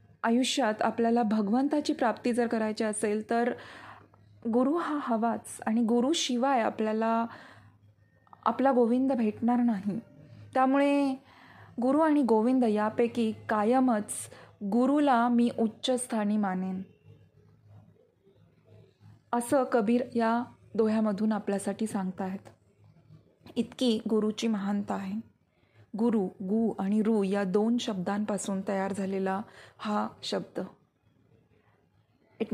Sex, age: female, 20-39